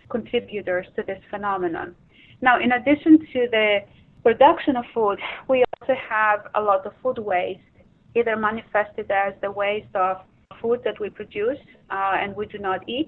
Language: English